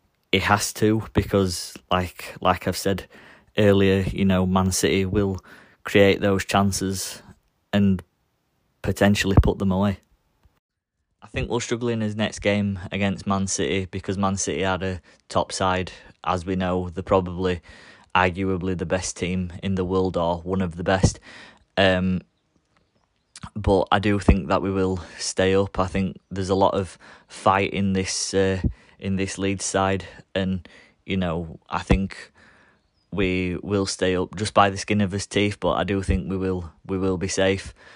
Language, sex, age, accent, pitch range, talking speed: English, male, 20-39, British, 90-100 Hz, 170 wpm